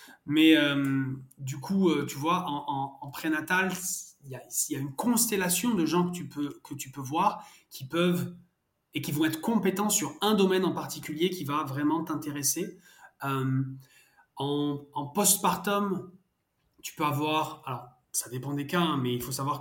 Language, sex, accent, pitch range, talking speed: French, male, French, 135-170 Hz, 180 wpm